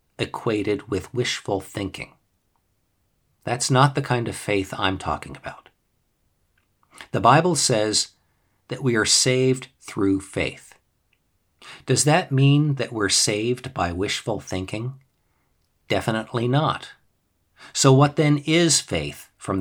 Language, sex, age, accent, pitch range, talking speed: English, male, 50-69, American, 100-135 Hz, 120 wpm